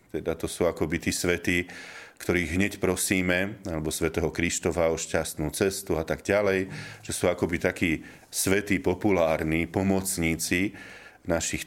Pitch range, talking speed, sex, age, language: 80-100 Hz, 140 wpm, male, 40-59, Slovak